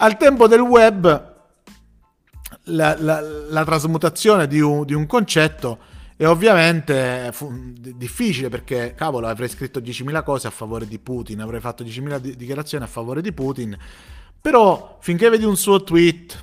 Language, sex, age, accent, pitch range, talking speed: Italian, male, 30-49, native, 120-155 Hz, 150 wpm